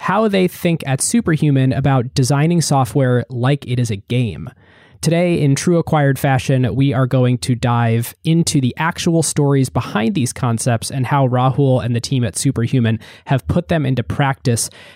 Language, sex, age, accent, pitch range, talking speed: English, male, 20-39, American, 120-150 Hz, 175 wpm